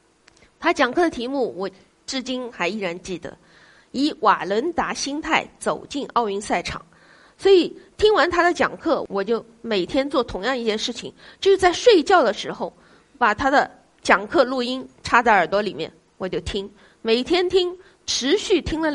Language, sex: Chinese, female